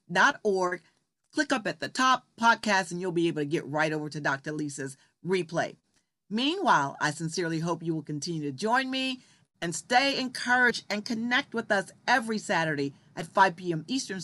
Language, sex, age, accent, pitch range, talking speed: English, female, 40-59, American, 160-225 Hz, 180 wpm